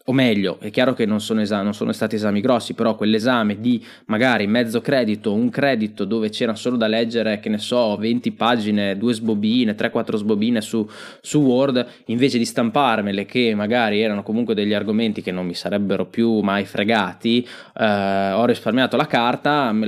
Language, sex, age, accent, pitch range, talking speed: Italian, male, 20-39, native, 105-140 Hz, 180 wpm